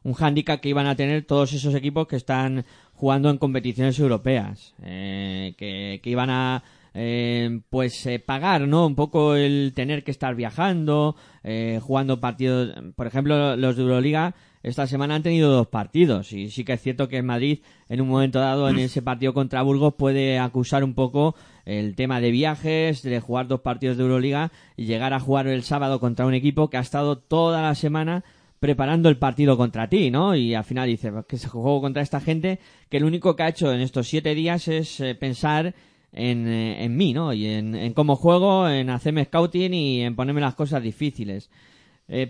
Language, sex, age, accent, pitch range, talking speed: Spanish, male, 20-39, Spanish, 125-150 Hz, 195 wpm